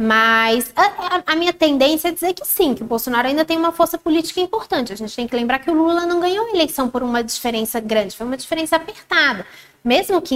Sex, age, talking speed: female, 20-39, 240 wpm